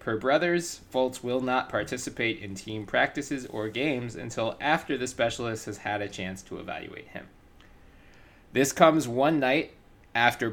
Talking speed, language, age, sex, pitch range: 155 wpm, English, 20-39, male, 100-125 Hz